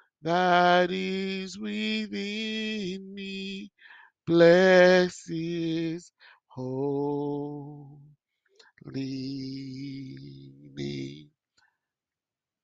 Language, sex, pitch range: English, male, 145-185 Hz